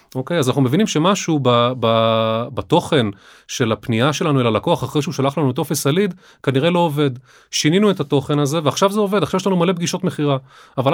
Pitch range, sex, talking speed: 130-170 Hz, male, 190 wpm